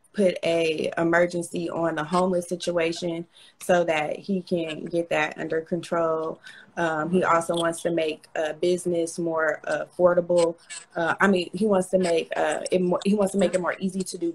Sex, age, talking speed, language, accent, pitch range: female, 20-39, 185 wpm, English, American, 165-185 Hz